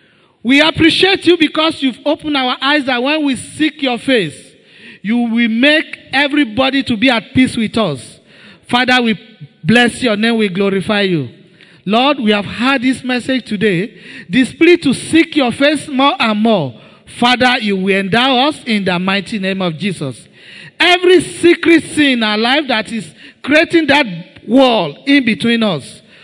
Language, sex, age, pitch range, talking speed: English, male, 40-59, 215-275 Hz, 165 wpm